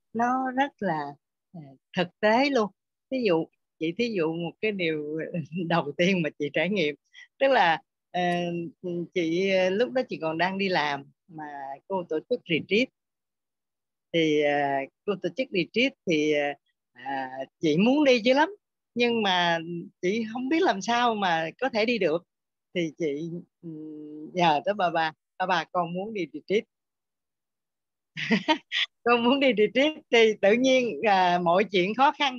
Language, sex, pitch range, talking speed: Vietnamese, female, 160-225 Hz, 160 wpm